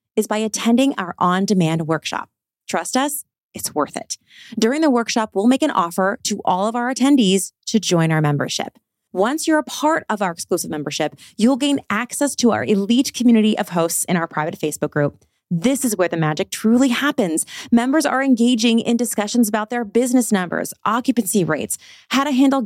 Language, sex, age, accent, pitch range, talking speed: English, female, 30-49, American, 185-245 Hz, 185 wpm